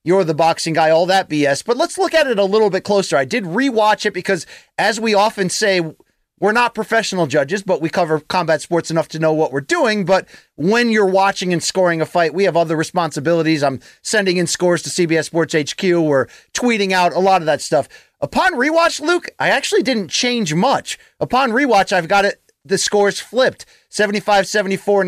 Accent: American